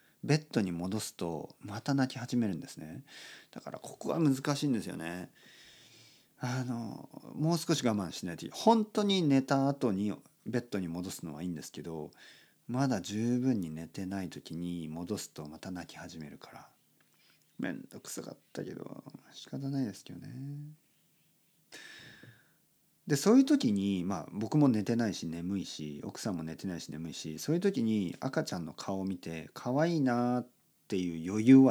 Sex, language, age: male, Japanese, 40-59